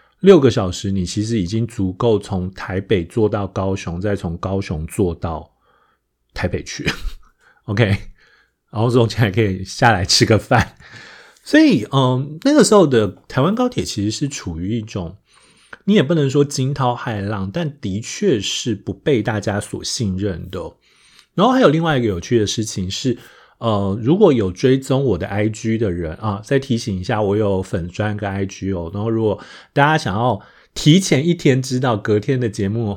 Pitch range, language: 100-125 Hz, Chinese